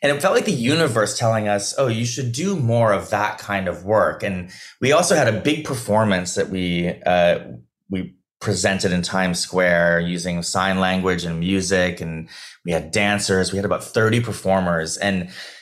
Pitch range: 90-115 Hz